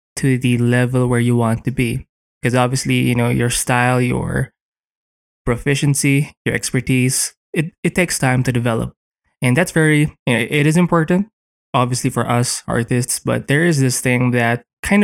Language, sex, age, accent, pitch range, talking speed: English, male, 20-39, Filipino, 120-145 Hz, 165 wpm